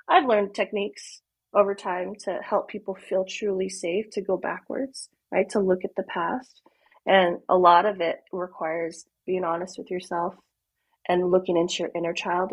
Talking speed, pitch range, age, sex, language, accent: 170 wpm, 180-215 Hz, 30-49, female, English, American